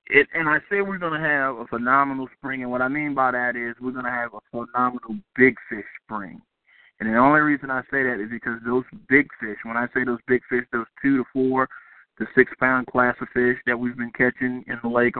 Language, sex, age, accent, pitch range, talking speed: English, male, 20-39, American, 120-130 Hz, 235 wpm